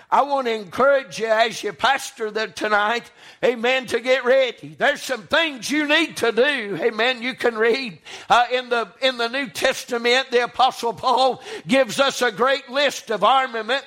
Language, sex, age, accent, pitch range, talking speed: English, male, 60-79, American, 250-300 Hz, 180 wpm